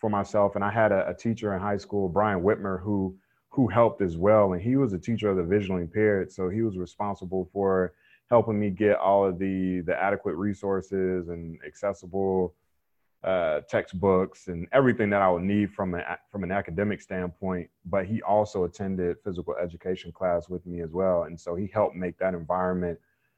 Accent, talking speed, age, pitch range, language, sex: American, 190 wpm, 30-49, 90-105 Hz, English, male